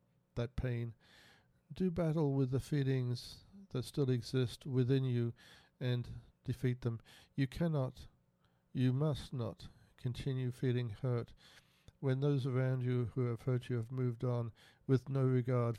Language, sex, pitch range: English, male, 120-135 Hz